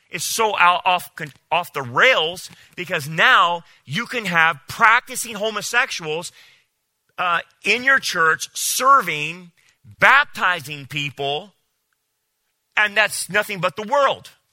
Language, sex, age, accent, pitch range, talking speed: English, male, 40-59, American, 150-205 Hz, 105 wpm